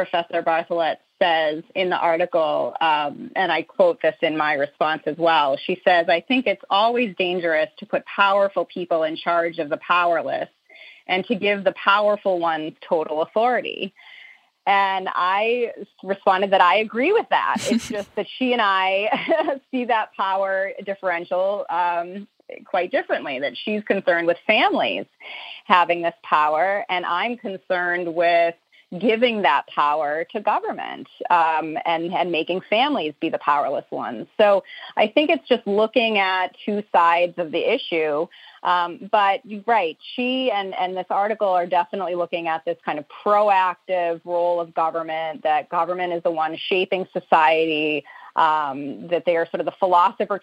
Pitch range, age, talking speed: 170-205 Hz, 30-49, 160 wpm